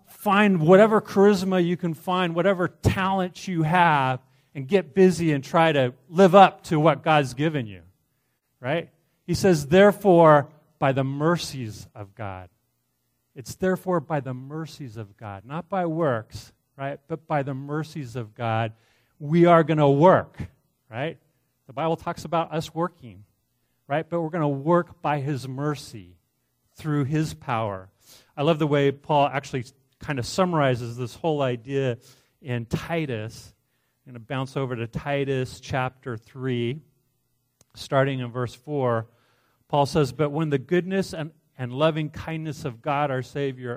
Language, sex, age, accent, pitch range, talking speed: English, male, 40-59, American, 125-165 Hz, 155 wpm